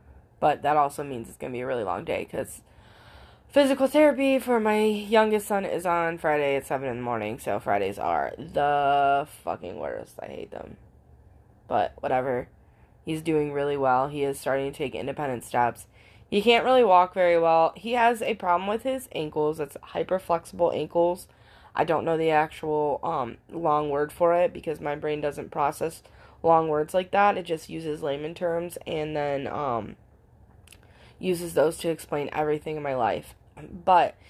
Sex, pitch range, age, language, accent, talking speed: female, 150-190 Hz, 10-29, English, American, 175 wpm